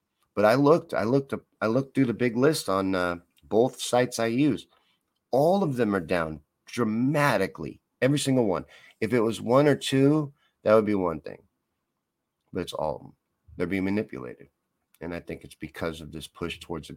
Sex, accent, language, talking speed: male, American, English, 195 wpm